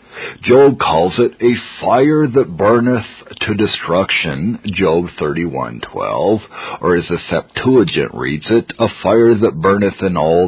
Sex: male